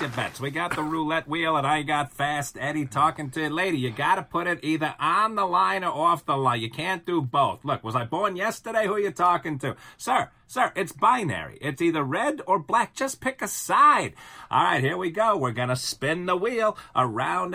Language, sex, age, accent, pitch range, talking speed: English, male, 30-49, American, 145-195 Hz, 220 wpm